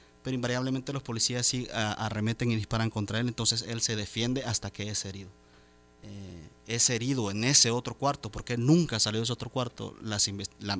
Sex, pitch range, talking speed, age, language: male, 100-120 Hz, 190 wpm, 30-49, Spanish